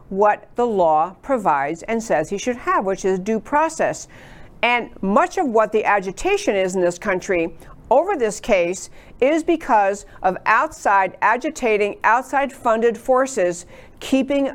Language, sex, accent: English, female, American